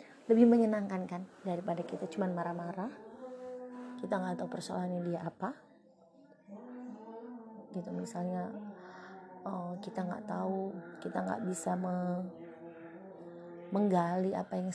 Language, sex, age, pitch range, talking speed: Indonesian, female, 20-39, 180-230 Hz, 100 wpm